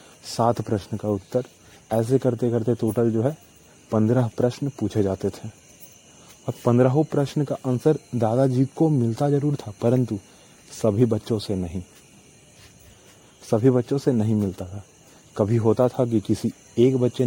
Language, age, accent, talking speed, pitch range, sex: Hindi, 30-49, native, 150 wpm, 105-130 Hz, male